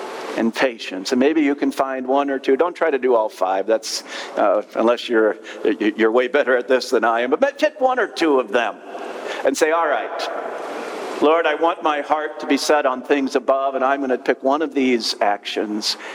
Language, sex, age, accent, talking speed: English, male, 50-69, American, 220 wpm